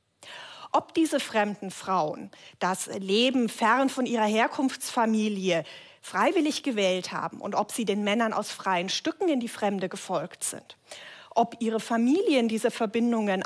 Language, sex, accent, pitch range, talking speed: German, female, German, 205-250 Hz, 140 wpm